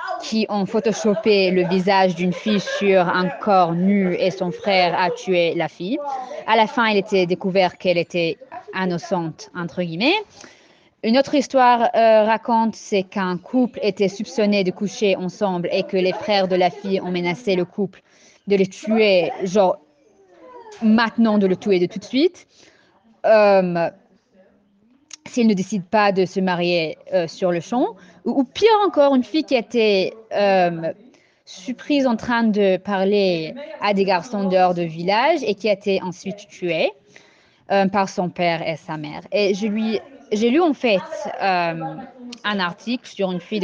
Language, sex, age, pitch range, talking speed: French, female, 20-39, 180-230 Hz, 170 wpm